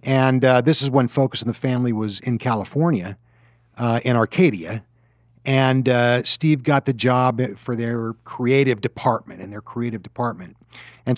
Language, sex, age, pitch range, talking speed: English, male, 50-69, 115-140 Hz, 160 wpm